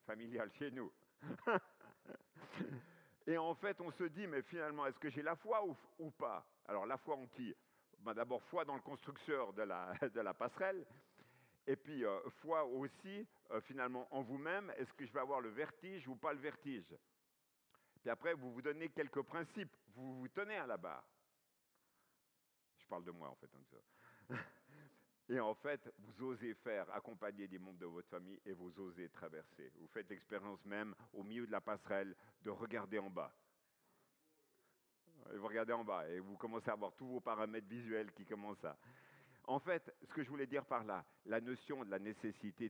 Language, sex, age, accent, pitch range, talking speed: French, male, 50-69, French, 100-145 Hz, 195 wpm